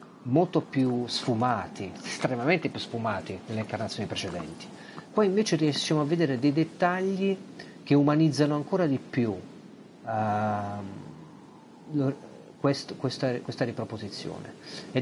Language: Italian